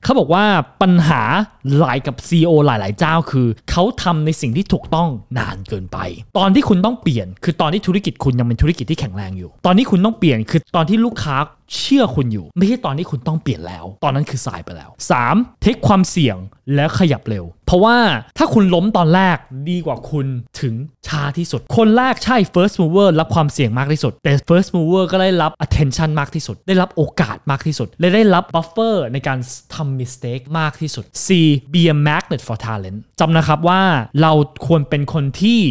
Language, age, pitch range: Thai, 20-39, 120-180 Hz